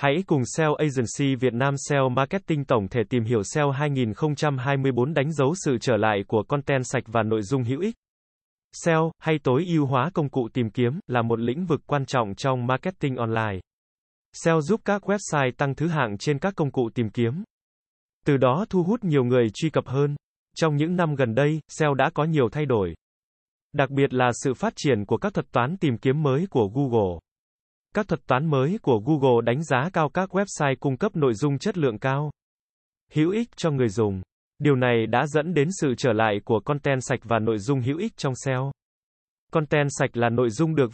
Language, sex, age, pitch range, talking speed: Vietnamese, male, 20-39, 125-155 Hz, 205 wpm